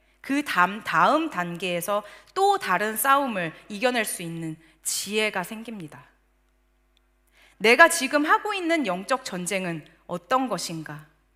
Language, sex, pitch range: Korean, female, 175-270 Hz